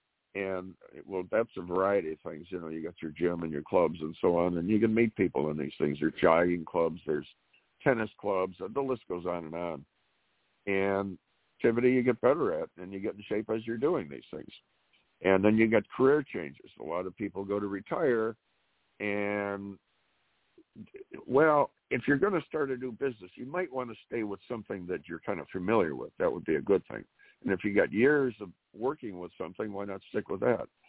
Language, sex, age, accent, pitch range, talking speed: English, male, 60-79, American, 90-120 Hz, 220 wpm